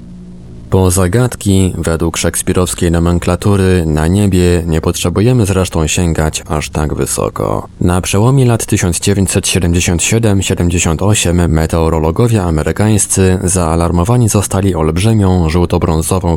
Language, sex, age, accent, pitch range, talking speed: Polish, male, 20-39, native, 80-100 Hz, 90 wpm